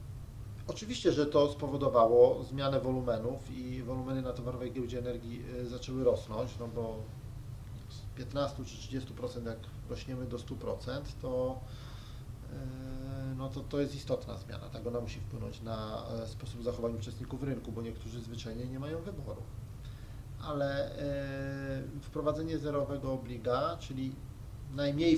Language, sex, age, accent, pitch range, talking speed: Polish, male, 30-49, native, 115-135 Hz, 125 wpm